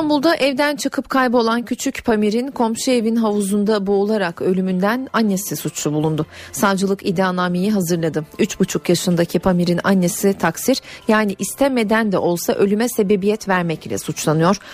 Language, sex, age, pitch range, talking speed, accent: Turkish, female, 40-59, 175-230 Hz, 125 wpm, native